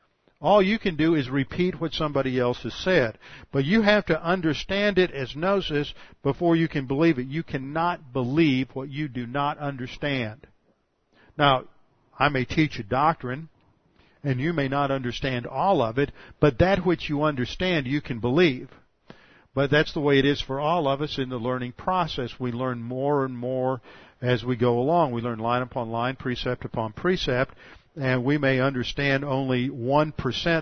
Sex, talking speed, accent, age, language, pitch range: male, 180 wpm, American, 50-69, English, 130-155 Hz